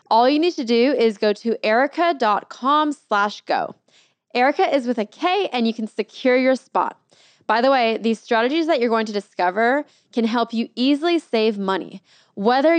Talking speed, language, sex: 180 wpm, English, female